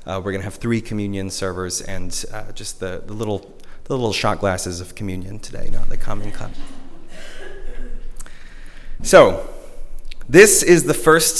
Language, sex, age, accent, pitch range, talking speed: English, male, 30-49, American, 105-150 Hz, 160 wpm